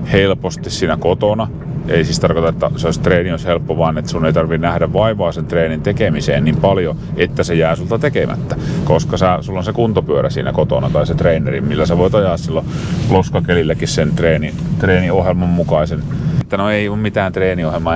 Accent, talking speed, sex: native, 185 wpm, male